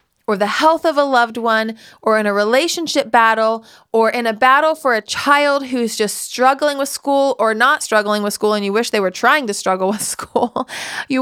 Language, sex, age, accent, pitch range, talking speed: English, female, 30-49, American, 205-255 Hz, 215 wpm